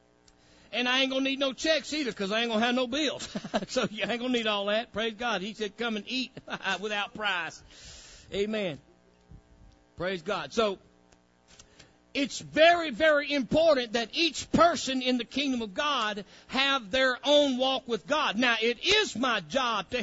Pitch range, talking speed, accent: 190-260 Hz, 185 wpm, American